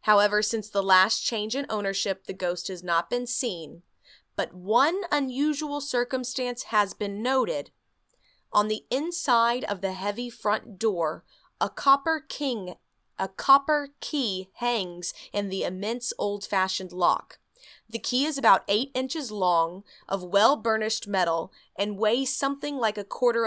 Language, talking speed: English, 145 wpm